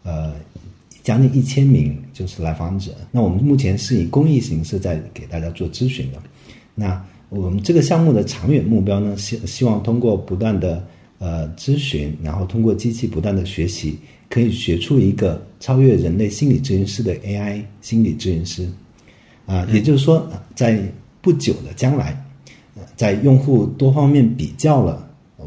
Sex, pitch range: male, 90-120 Hz